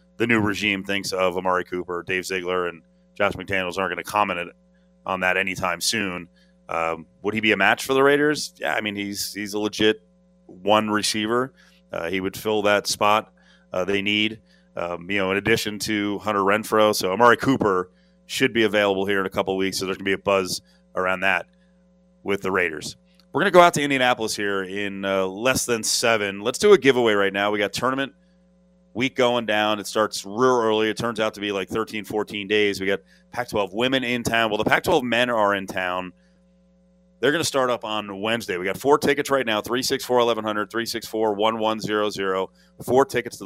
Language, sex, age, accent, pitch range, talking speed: English, male, 30-49, American, 100-130 Hz, 205 wpm